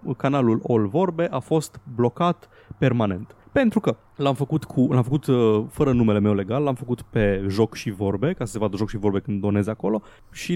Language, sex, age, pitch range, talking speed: Romanian, male, 20-39, 110-150 Hz, 200 wpm